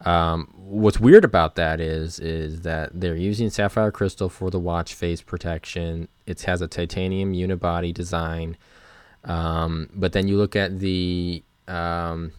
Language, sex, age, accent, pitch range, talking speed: English, male, 10-29, American, 80-95 Hz, 150 wpm